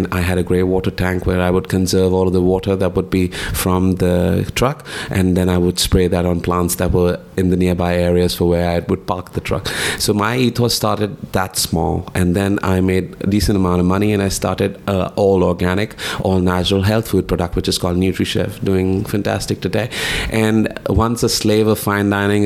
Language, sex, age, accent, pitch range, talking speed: English, male, 30-49, Indian, 90-100 Hz, 215 wpm